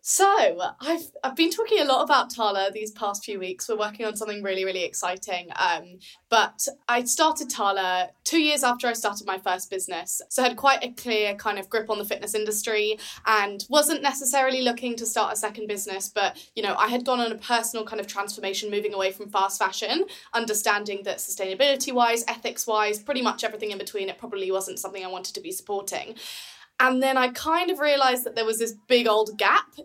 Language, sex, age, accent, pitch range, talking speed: English, female, 20-39, British, 205-250 Hz, 210 wpm